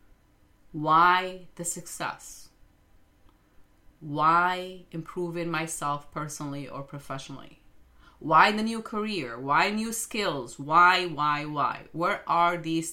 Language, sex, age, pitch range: English, female, 30-49, 140-180 Hz